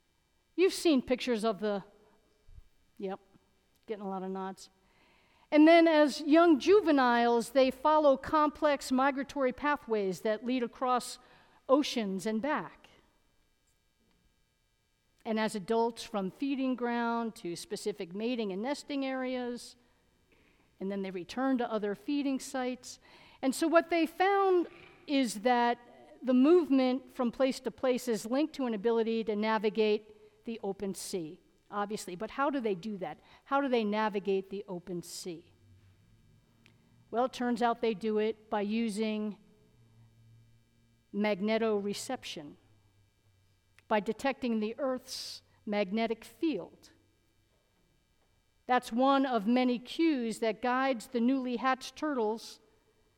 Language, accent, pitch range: English, American, 200-260 Hz